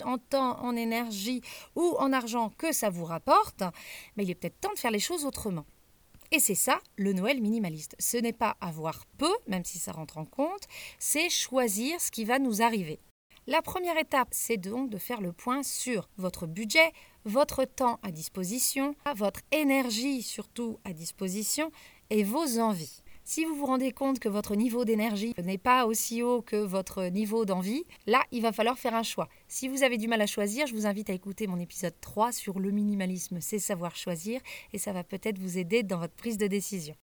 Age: 30-49